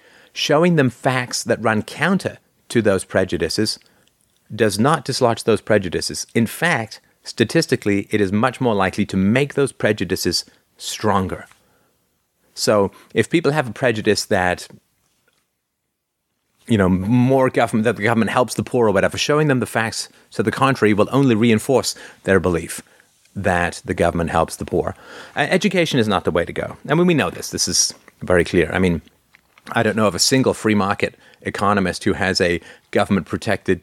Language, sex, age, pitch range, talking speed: English, male, 30-49, 95-120 Hz, 170 wpm